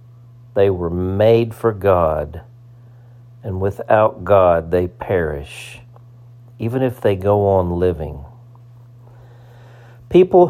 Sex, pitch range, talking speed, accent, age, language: male, 110-120 Hz, 95 wpm, American, 50-69, English